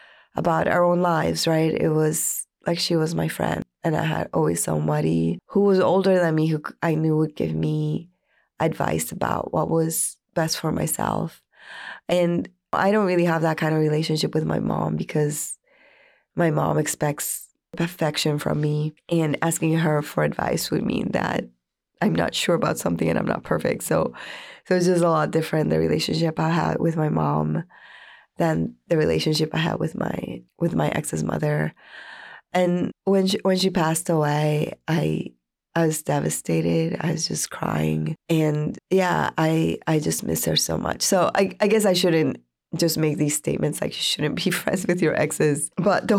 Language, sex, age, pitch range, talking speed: English, female, 20-39, 140-175 Hz, 180 wpm